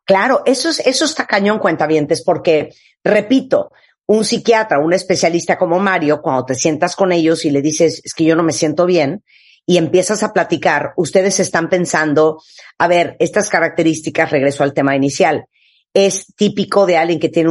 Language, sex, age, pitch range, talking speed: Spanish, female, 50-69, 160-210 Hz, 180 wpm